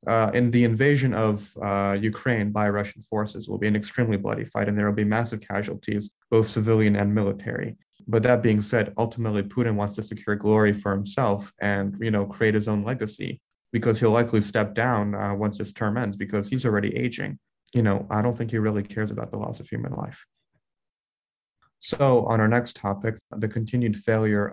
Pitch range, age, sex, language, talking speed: 100-115 Hz, 20-39, male, English, 200 wpm